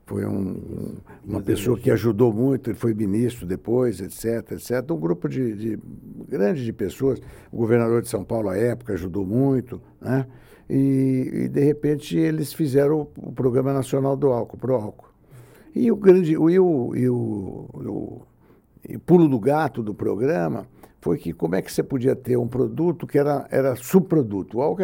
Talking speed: 185 wpm